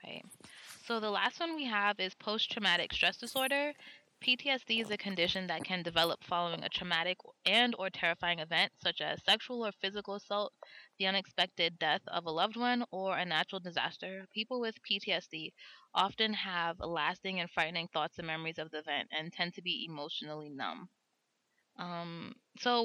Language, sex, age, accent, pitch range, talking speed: English, female, 20-39, American, 165-215 Hz, 165 wpm